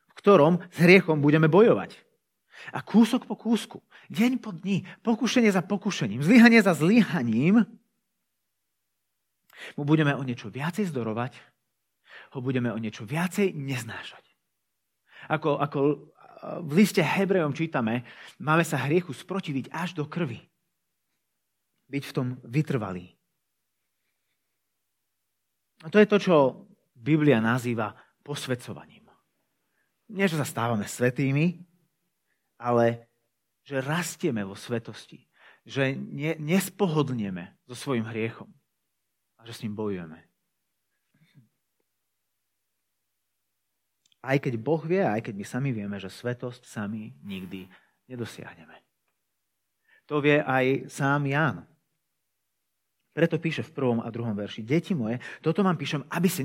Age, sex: 30-49, male